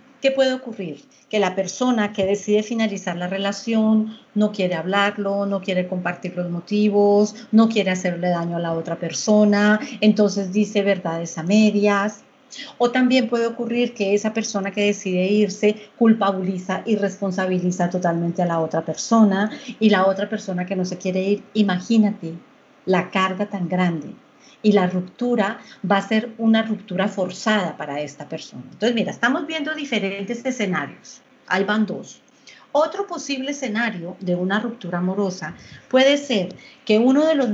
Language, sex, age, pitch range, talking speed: Spanish, female, 40-59, 185-230 Hz, 155 wpm